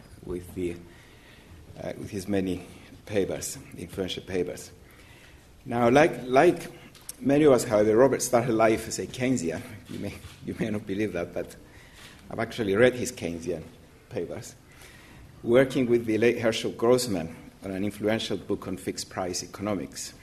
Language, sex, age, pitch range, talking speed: English, male, 60-79, 90-120 Hz, 140 wpm